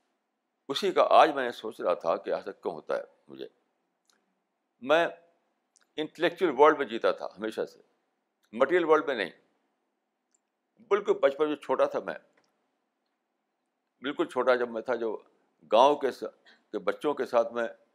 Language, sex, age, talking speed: Urdu, male, 60-79, 145 wpm